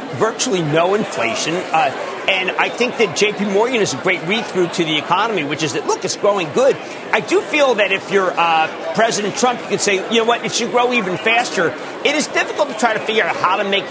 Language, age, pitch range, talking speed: English, 40-59, 195-245 Hz, 235 wpm